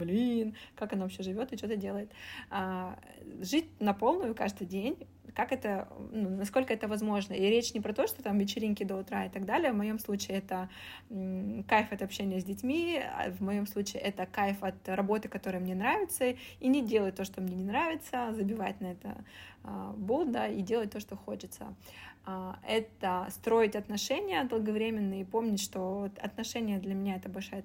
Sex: female